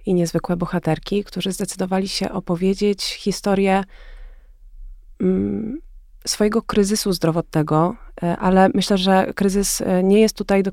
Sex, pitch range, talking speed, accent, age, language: female, 170-190 Hz, 105 wpm, native, 30-49, Polish